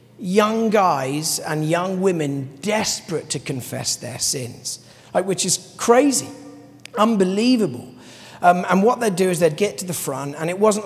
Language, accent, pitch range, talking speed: English, British, 140-175 Hz, 160 wpm